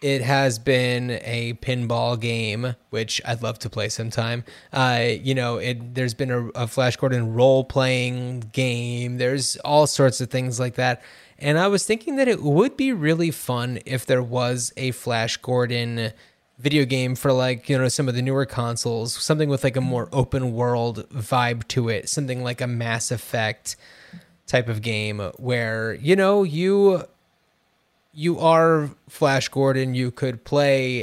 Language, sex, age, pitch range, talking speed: English, male, 20-39, 120-145 Hz, 165 wpm